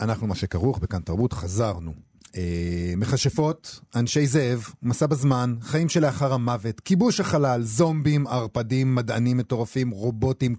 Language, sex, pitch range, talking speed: Hebrew, male, 100-135 Hz, 120 wpm